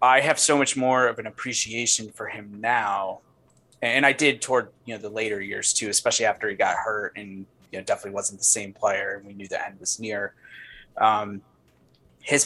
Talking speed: 205 wpm